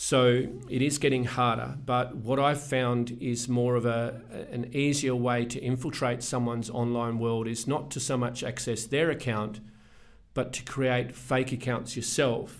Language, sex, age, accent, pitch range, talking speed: English, male, 40-59, Australian, 115-125 Hz, 165 wpm